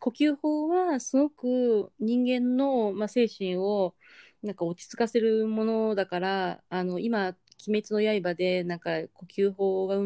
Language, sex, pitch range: Japanese, female, 180-250 Hz